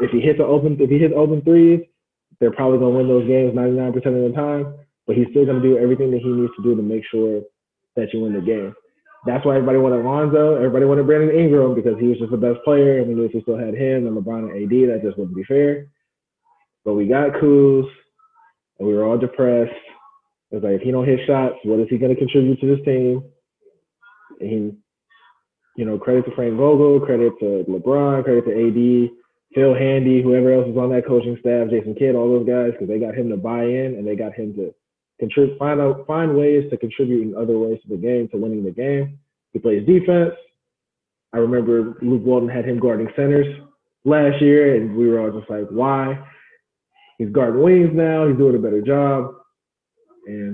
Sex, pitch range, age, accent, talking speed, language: male, 115-145 Hz, 20-39, American, 220 wpm, English